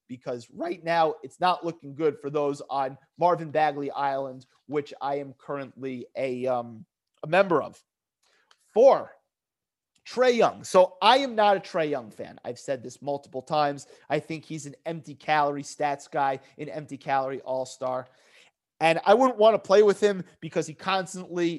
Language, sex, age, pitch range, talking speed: English, male, 30-49, 140-180 Hz, 170 wpm